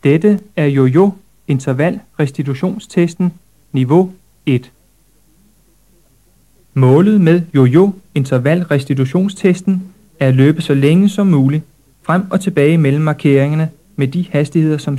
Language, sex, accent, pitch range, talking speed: Danish, male, native, 135-175 Hz, 110 wpm